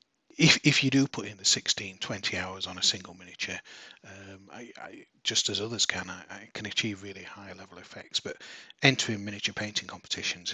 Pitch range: 100-110 Hz